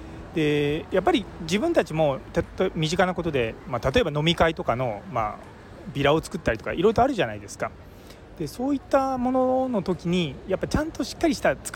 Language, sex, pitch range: Japanese, male, 125-200 Hz